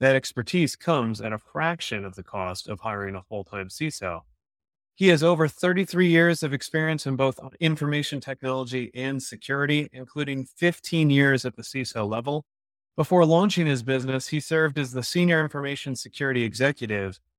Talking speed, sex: 160 wpm, male